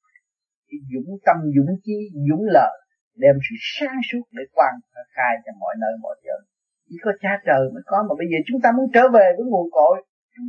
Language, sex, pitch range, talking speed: Vietnamese, male, 175-270 Hz, 205 wpm